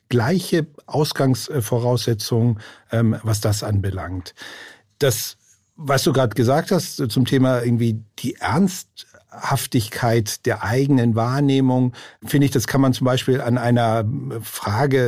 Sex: male